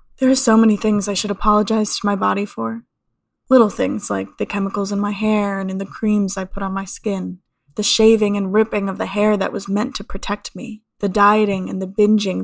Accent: American